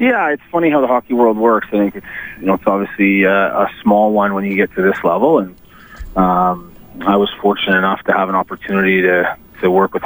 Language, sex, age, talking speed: English, male, 30-49, 235 wpm